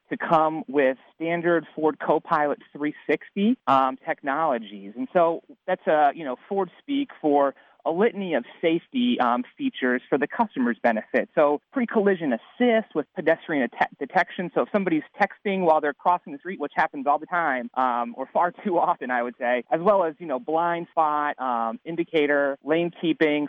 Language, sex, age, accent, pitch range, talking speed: English, male, 30-49, American, 130-185 Hz, 175 wpm